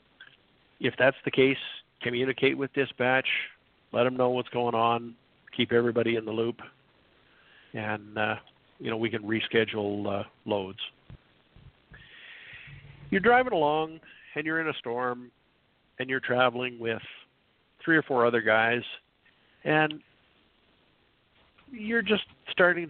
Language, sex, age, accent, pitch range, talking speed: English, male, 50-69, American, 120-160 Hz, 125 wpm